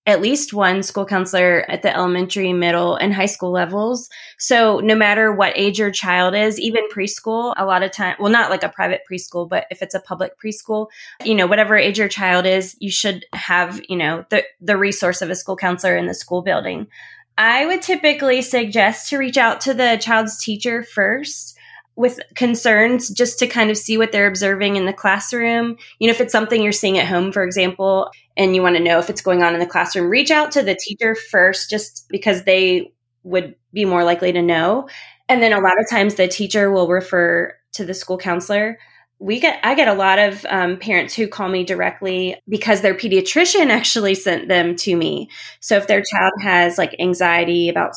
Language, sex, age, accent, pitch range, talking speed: English, female, 20-39, American, 180-215 Hz, 210 wpm